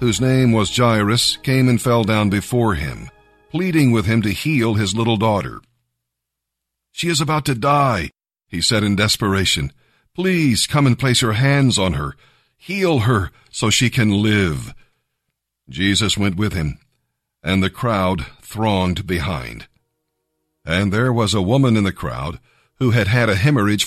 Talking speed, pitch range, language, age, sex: 160 wpm, 95-125 Hz, English, 50-69, male